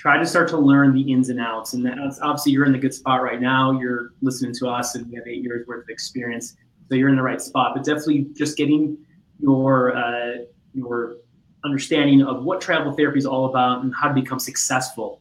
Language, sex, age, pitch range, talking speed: English, male, 20-39, 125-145 Hz, 225 wpm